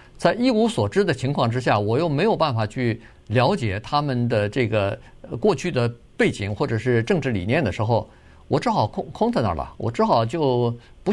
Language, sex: Chinese, male